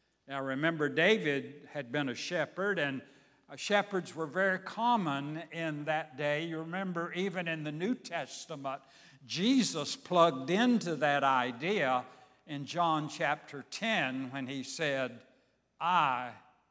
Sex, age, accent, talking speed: male, 60-79, American, 125 wpm